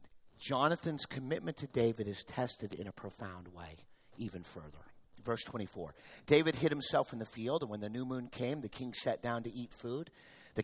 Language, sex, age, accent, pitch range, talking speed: English, male, 50-69, American, 110-160 Hz, 190 wpm